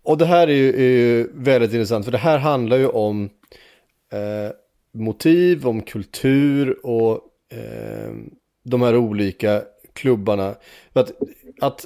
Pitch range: 115-155 Hz